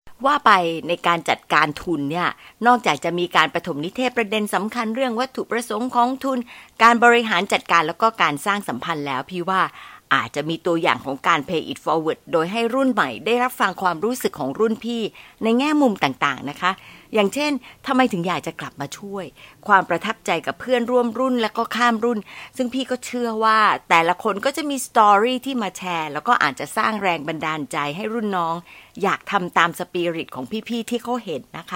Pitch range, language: 170-240 Hz, Thai